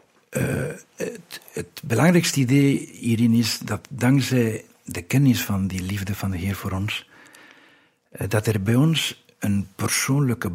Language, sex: Dutch, male